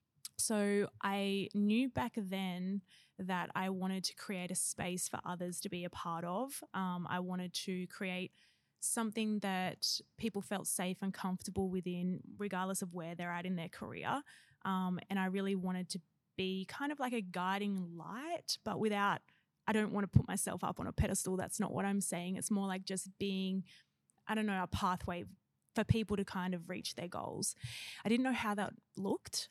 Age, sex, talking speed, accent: 20-39, female, 190 wpm, Australian